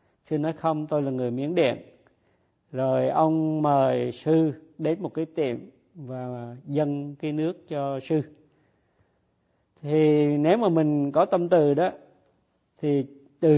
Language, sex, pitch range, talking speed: Vietnamese, male, 130-155 Hz, 140 wpm